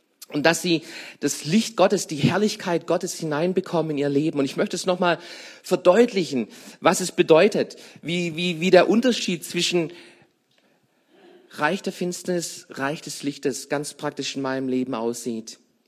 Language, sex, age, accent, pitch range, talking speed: German, male, 40-59, German, 145-200 Hz, 150 wpm